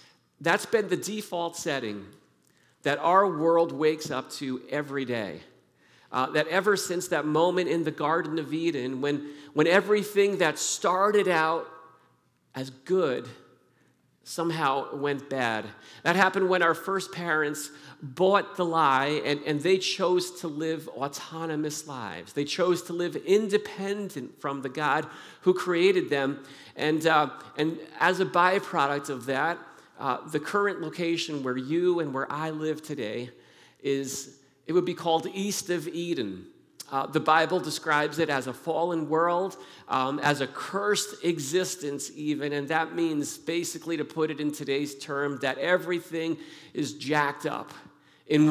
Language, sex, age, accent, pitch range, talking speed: Dutch, male, 50-69, American, 140-175 Hz, 150 wpm